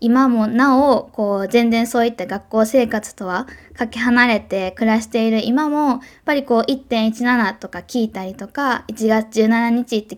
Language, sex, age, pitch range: Japanese, female, 20-39, 210-270 Hz